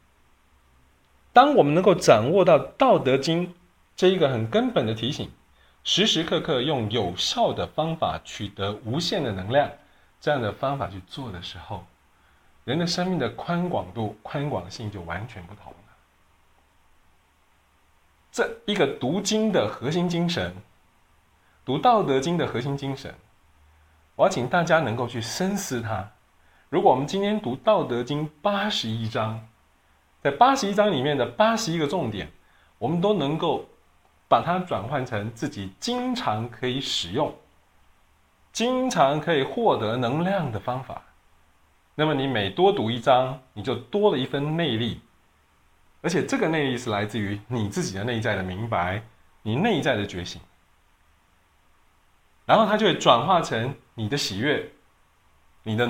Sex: male